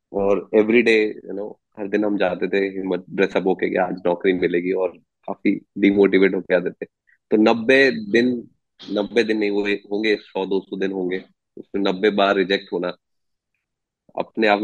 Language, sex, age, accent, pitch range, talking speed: English, male, 20-39, Indian, 95-110 Hz, 110 wpm